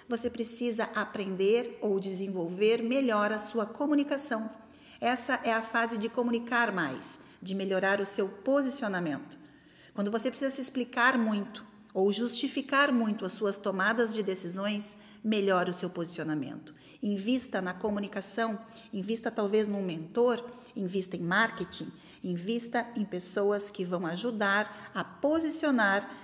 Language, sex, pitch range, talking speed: Portuguese, female, 200-245 Hz, 130 wpm